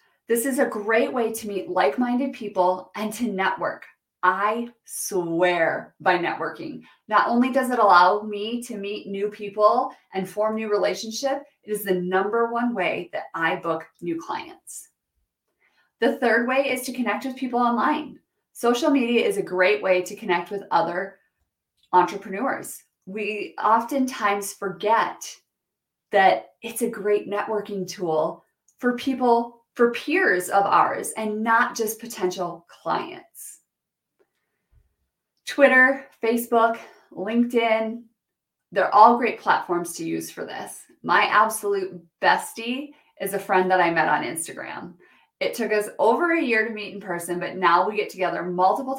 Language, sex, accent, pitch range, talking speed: English, female, American, 185-235 Hz, 145 wpm